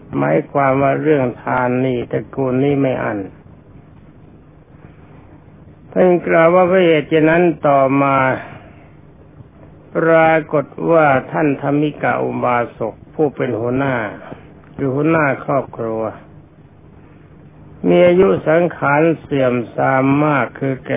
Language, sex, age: Thai, male, 60-79